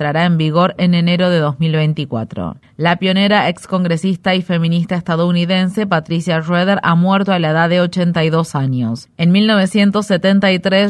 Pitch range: 165-190 Hz